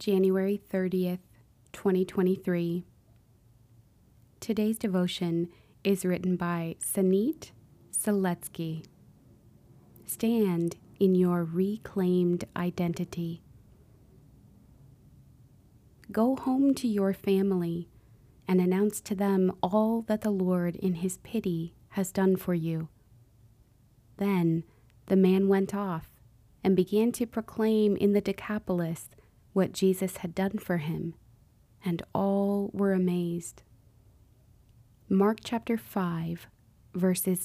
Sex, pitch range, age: female, 125-195 Hz, 20-39